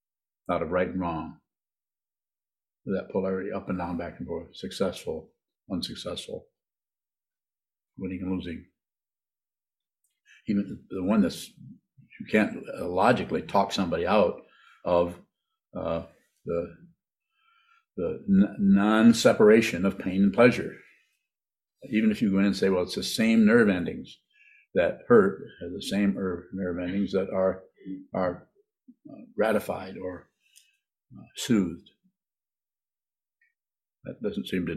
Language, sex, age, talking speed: English, male, 50-69, 120 wpm